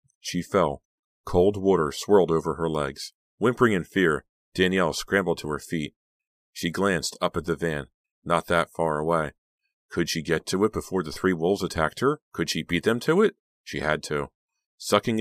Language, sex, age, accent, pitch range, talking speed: English, male, 40-59, American, 75-95 Hz, 185 wpm